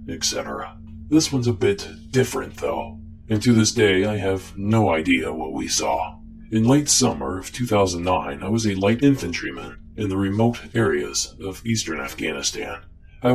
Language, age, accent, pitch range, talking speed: English, 40-59, American, 85-110 Hz, 160 wpm